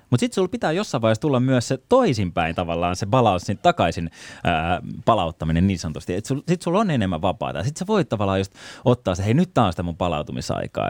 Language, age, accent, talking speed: Finnish, 20-39, native, 215 wpm